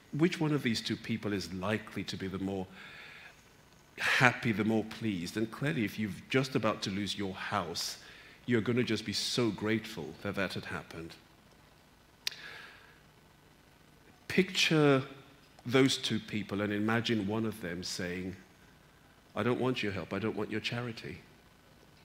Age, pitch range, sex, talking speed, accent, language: 50-69, 95-115 Hz, male, 155 wpm, British, English